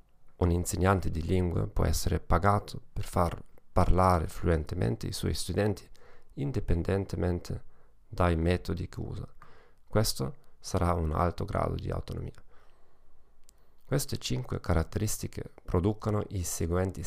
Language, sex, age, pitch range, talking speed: Italian, male, 40-59, 85-110 Hz, 115 wpm